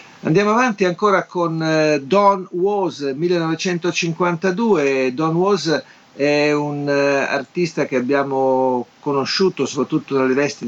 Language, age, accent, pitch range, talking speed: Italian, 50-69, native, 125-160 Hz, 100 wpm